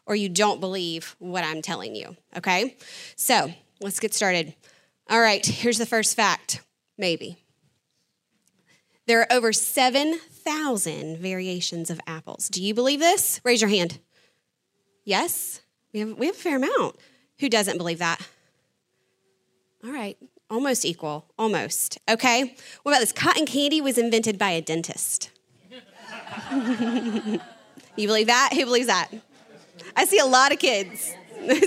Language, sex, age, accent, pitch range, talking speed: English, female, 20-39, American, 195-280 Hz, 140 wpm